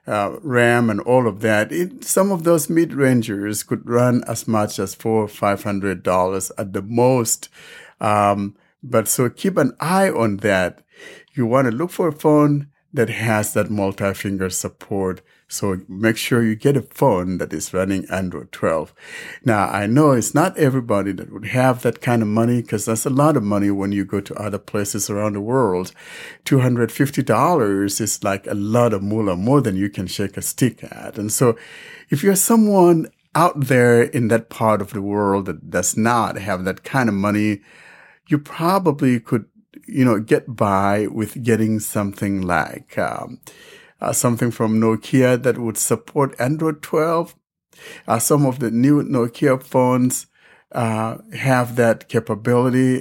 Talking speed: 170 wpm